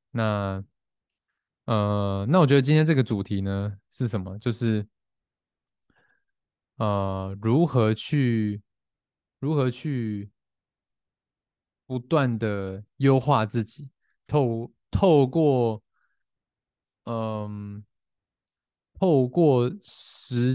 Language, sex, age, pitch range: Chinese, male, 20-39, 100-130 Hz